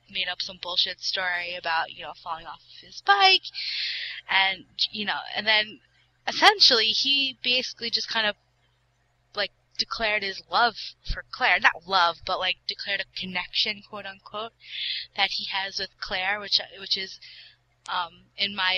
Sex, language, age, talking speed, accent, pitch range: female, English, 20-39, 155 wpm, American, 170-205 Hz